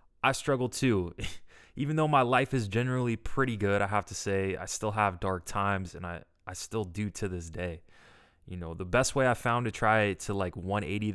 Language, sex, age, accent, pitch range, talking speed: English, male, 20-39, American, 95-115 Hz, 215 wpm